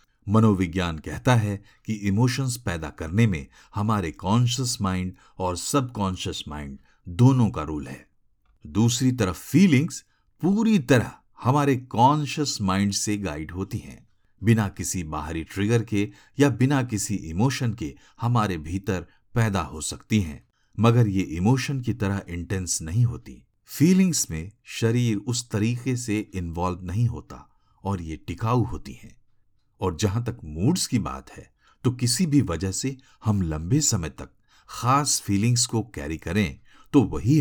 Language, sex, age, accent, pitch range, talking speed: Hindi, male, 50-69, native, 90-120 Hz, 145 wpm